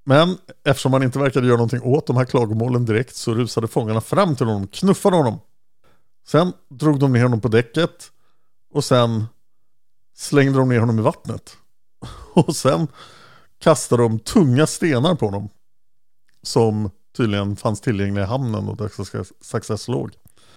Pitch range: 110-140 Hz